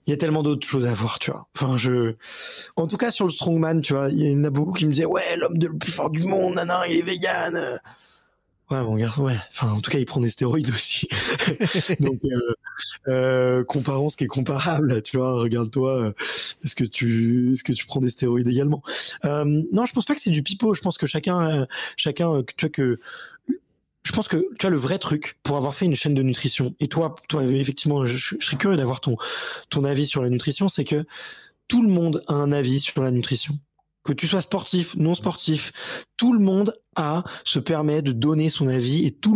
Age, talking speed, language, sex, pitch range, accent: 20-39, 230 wpm, French, male, 130-170 Hz, French